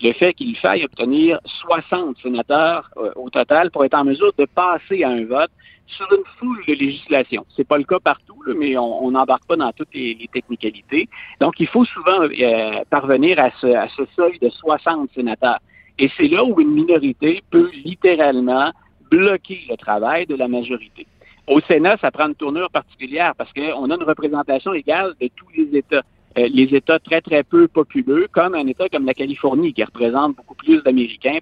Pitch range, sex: 130-205 Hz, male